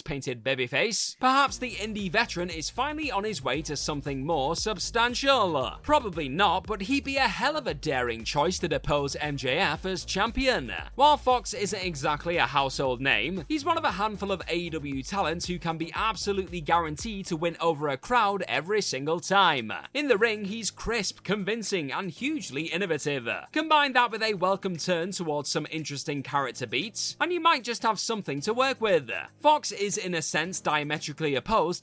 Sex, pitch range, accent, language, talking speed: male, 155-230 Hz, British, English, 185 wpm